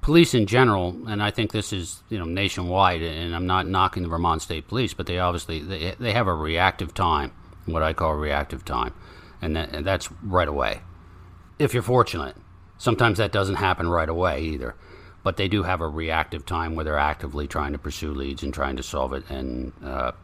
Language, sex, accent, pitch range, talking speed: English, male, American, 75-90 Hz, 210 wpm